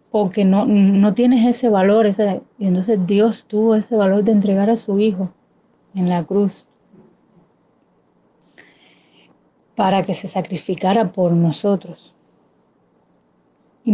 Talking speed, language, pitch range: 115 wpm, Spanish, 180-210 Hz